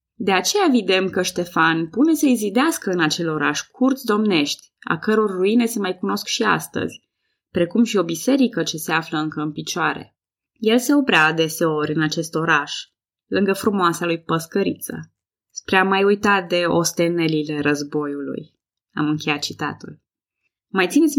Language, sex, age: Romanian, female, 20-39